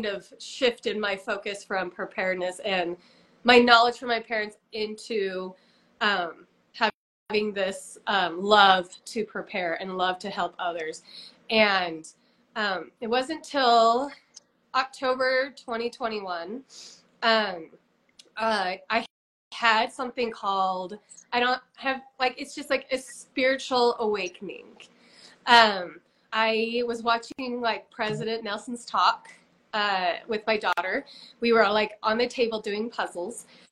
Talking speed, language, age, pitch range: 125 wpm, English, 20-39, 205-250 Hz